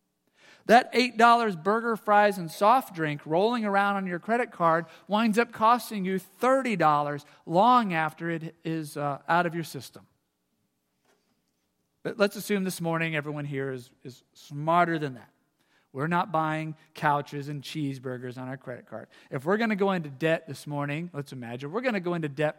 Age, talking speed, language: 40-59, 175 wpm, English